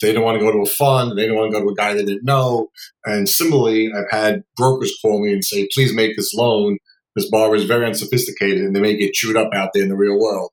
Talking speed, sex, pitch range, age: 280 wpm, male, 105-135 Hz, 40-59